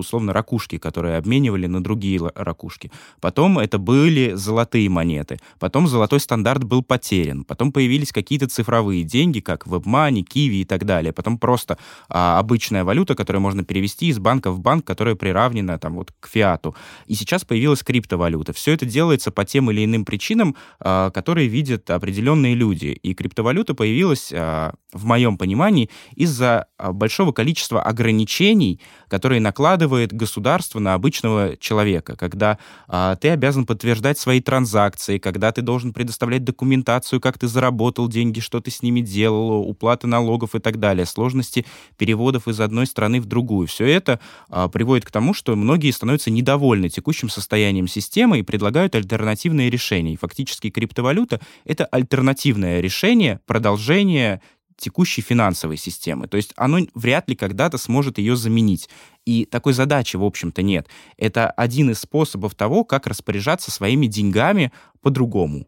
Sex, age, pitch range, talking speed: male, 20-39, 100-130 Hz, 145 wpm